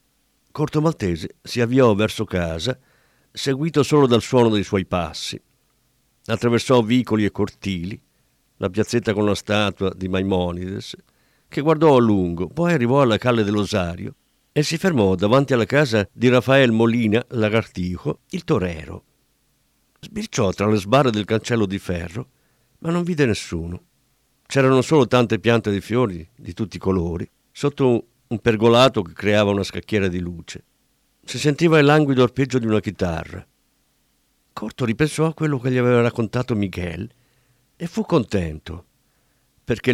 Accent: native